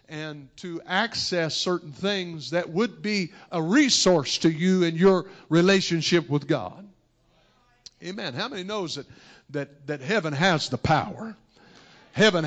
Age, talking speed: 60-79, 140 wpm